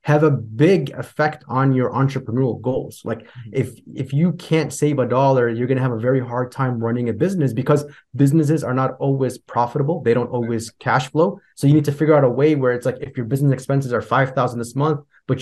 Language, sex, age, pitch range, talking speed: English, male, 20-39, 120-140 Hz, 225 wpm